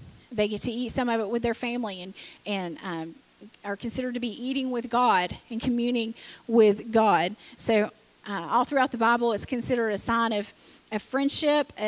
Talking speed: 185 wpm